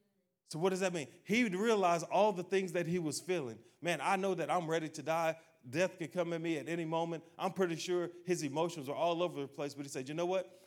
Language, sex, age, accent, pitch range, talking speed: English, male, 30-49, American, 140-185 Hz, 260 wpm